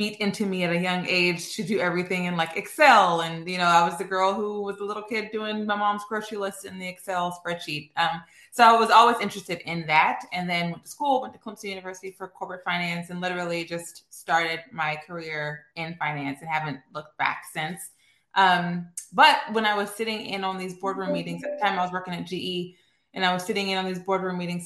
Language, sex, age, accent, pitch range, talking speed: English, female, 20-39, American, 175-215 Hz, 230 wpm